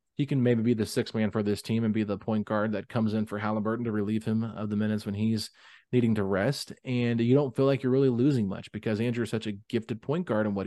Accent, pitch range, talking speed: American, 105-130 Hz, 280 wpm